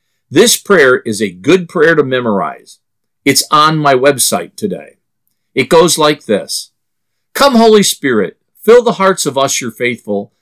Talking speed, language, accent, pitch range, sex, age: 155 wpm, English, American, 120-185 Hz, male, 50-69